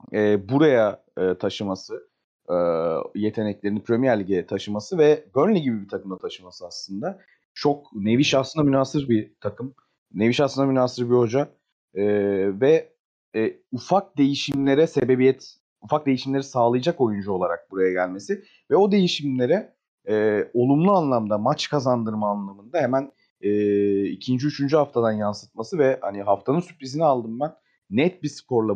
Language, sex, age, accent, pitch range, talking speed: Turkish, male, 30-49, native, 105-145 Hz, 135 wpm